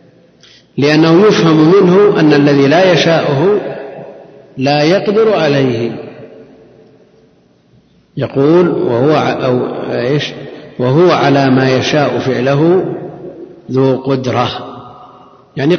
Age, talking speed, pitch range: 50-69, 75 wpm, 120-140 Hz